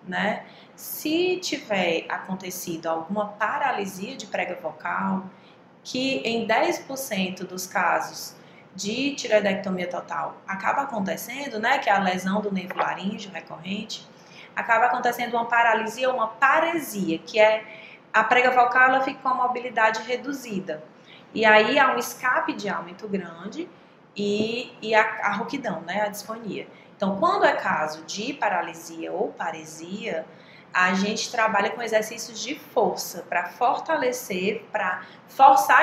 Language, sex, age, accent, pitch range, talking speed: Portuguese, female, 20-39, Brazilian, 185-240 Hz, 135 wpm